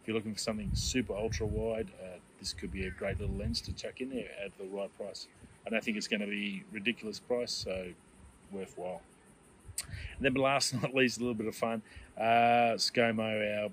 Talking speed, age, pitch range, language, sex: 210 wpm, 30-49, 100-115 Hz, English, male